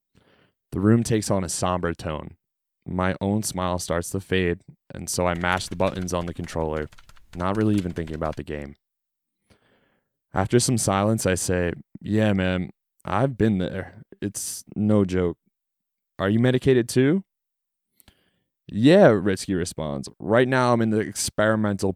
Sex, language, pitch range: male, English, 85-110 Hz